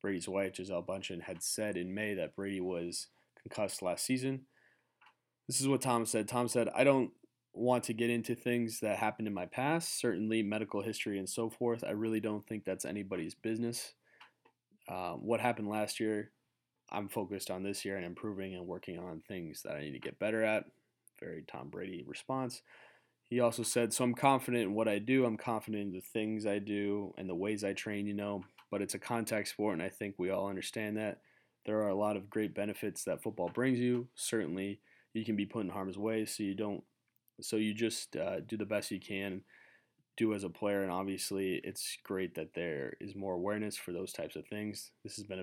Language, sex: English, male